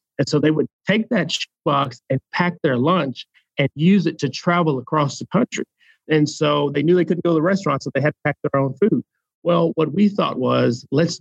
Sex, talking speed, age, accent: male, 230 wpm, 40-59, American